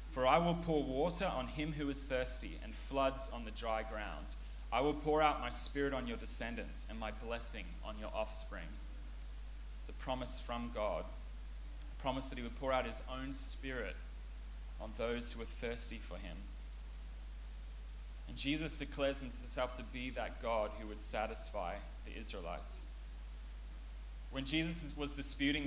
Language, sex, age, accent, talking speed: English, male, 30-49, Australian, 165 wpm